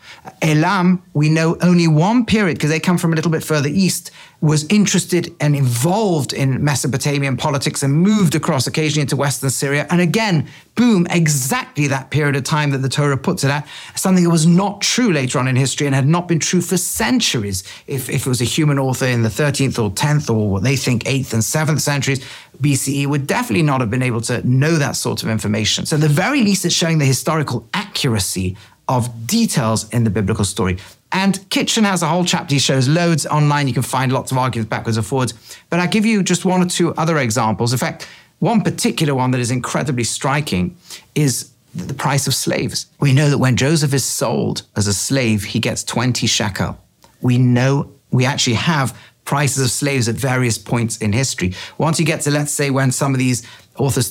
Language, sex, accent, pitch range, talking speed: English, male, British, 125-165 Hz, 210 wpm